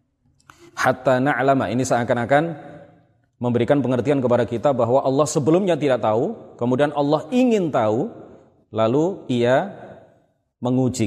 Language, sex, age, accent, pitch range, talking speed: Indonesian, male, 30-49, native, 115-145 Hz, 110 wpm